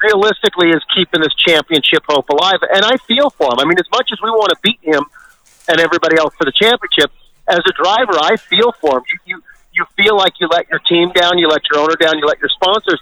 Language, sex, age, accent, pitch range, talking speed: English, male, 40-59, American, 160-200 Hz, 250 wpm